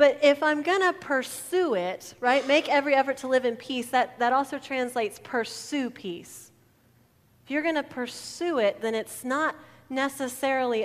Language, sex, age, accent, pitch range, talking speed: English, female, 30-49, American, 200-255 Hz, 170 wpm